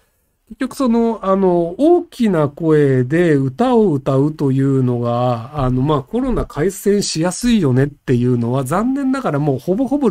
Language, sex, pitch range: Japanese, male, 140-230 Hz